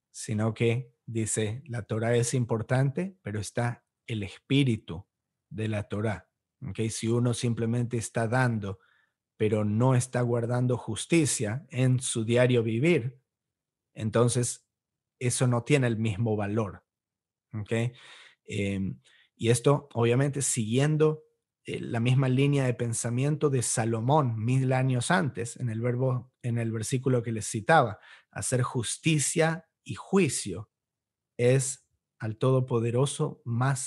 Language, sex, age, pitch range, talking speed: English, male, 40-59, 110-130 Hz, 120 wpm